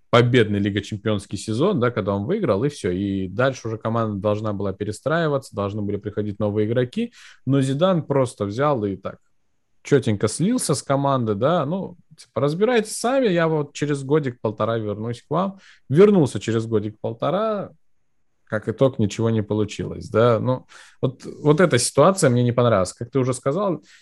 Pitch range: 105-145 Hz